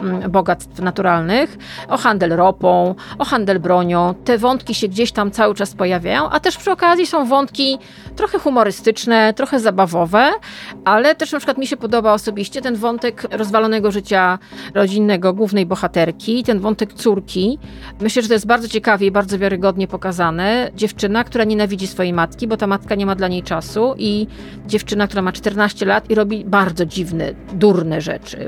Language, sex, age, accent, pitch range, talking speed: Polish, female, 40-59, native, 195-245 Hz, 165 wpm